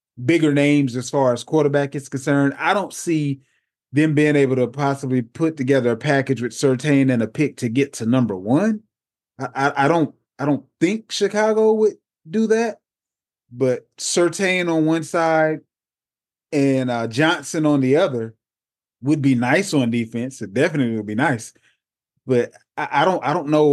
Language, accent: English, American